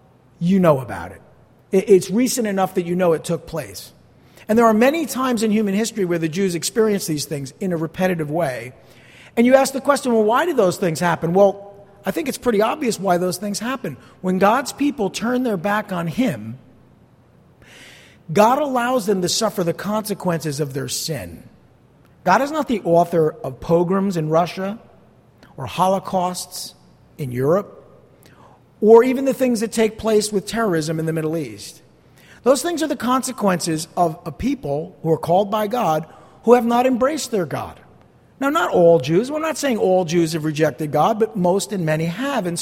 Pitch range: 170-245 Hz